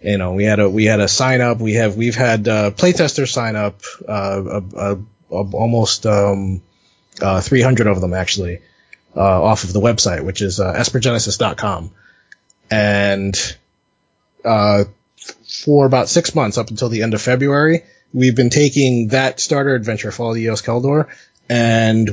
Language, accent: English, American